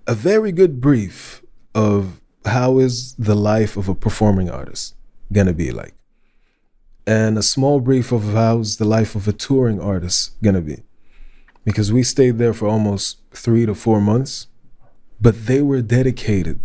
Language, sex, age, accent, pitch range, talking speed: English, male, 20-39, American, 100-120 Hz, 170 wpm